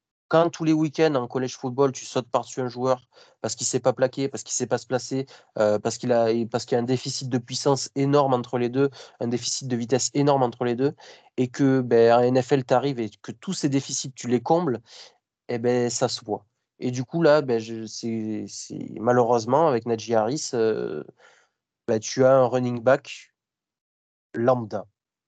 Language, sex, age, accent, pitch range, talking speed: French, male, 20-39, French, 115-130 Hz, 210 wpm